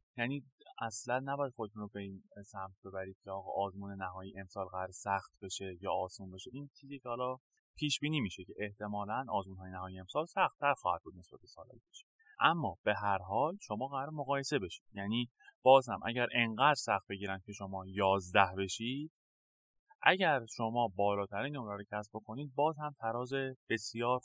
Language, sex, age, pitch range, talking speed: Persian, male, 30-49, 95-130 Hz, 160 wpm